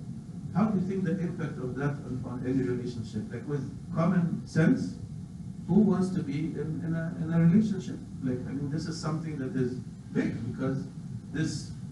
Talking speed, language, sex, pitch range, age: 185 wpm, English, male, 125-155 Hz, 50-69